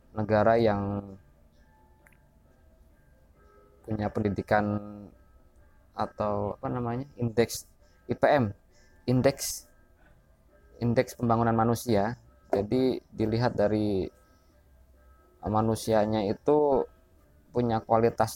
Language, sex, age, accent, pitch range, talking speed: Indonesian, male, 20-39, native, 85-130 Hz, 65 wpm